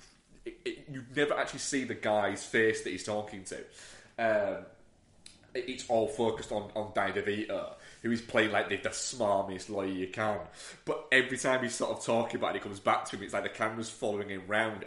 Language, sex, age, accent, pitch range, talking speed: English, male, 30-49, British, 95-115 Hz, 215 wpm